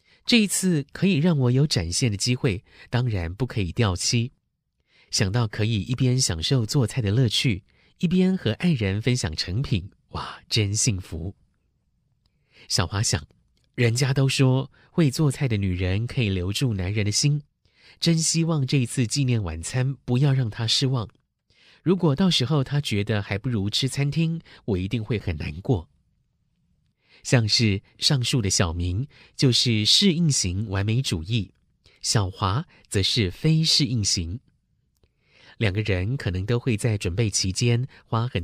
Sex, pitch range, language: male, 100-135 Hz, Chinese